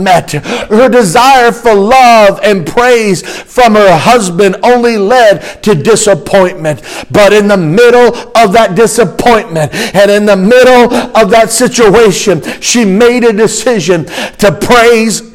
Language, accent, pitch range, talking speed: English, American, 195-230 Hz, 130 wpm